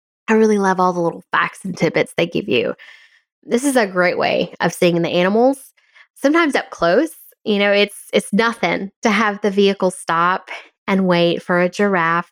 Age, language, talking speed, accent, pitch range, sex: 10-29, English, 190 wpm, American, 170-225 Hz, female